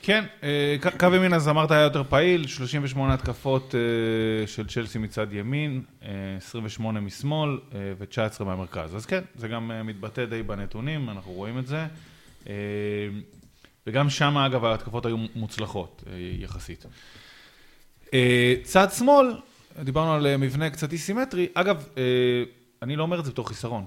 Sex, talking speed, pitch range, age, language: male, 130 wpm, 105-145 Hz, 30-49, Hebrew